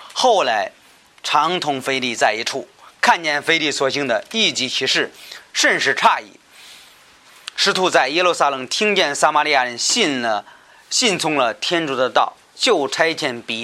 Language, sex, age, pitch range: Chinese, male, 30-49, 140-170 Hz